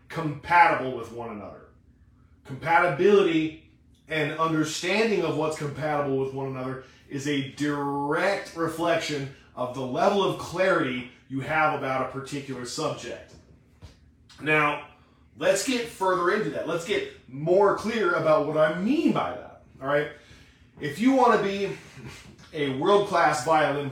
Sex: male